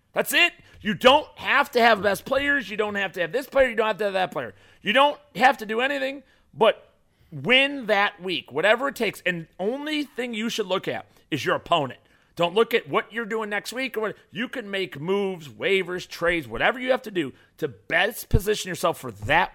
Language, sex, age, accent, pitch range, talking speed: English, male, 40-59, American, 170-250 Hz, 225 wpm